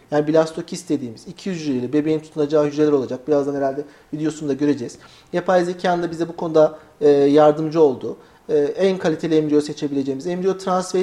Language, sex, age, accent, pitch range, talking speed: Turkish, male, 40-59, native, 150-200 Hz, 145 wpm